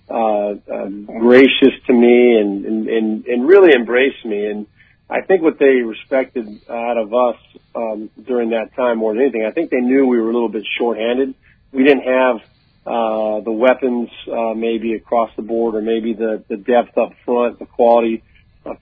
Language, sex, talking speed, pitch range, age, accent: English, male, 190 wpm, 110-125 Hz, 40-59, American